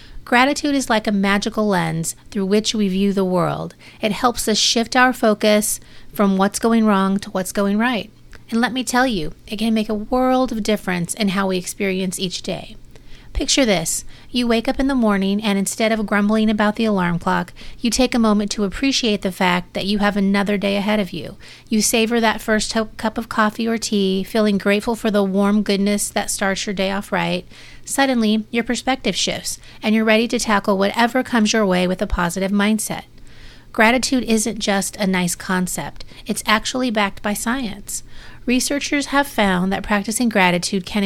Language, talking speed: English, 195 wpm